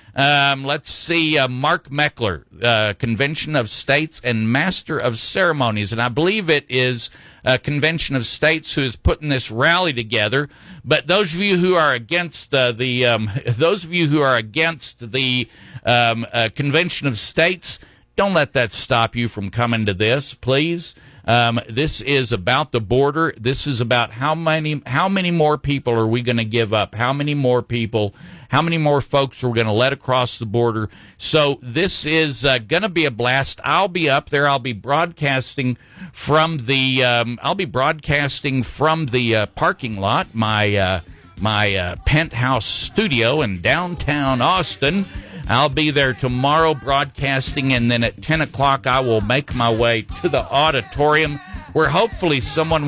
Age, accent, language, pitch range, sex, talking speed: 50-69, American, English, 120-150 Hz, male, 175 wpm